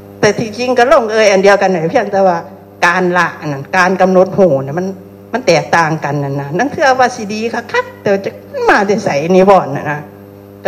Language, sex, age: Thai, female, 60-79